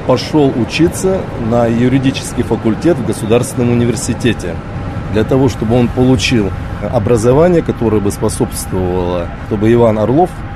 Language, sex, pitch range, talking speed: Russian, male, 100-135 Hz, 115 wpm